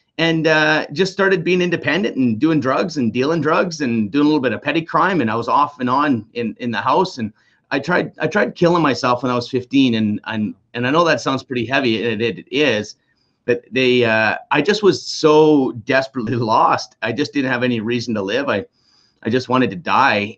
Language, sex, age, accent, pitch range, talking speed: English, male, 30-49, American, 110-135 Hz, 225 wpm